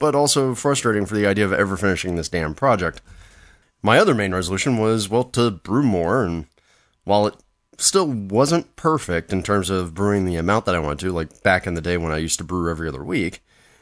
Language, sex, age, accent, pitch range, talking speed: English, male, 30-49, American, 85-110 Hz, 215 wpm